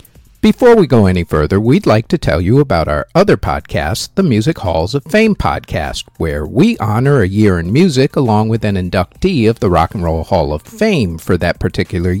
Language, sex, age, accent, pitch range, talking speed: English, male, 50-69, American, 105-155 Hz, 205 wpm